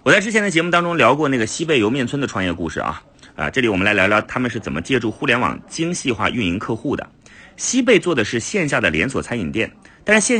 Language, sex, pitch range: Chinese, male, 110-175 Hz